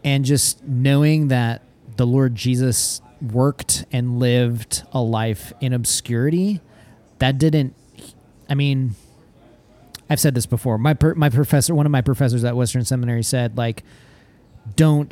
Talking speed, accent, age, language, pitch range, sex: 140 wpm, American, 30-49, English, 115-135 Hz, male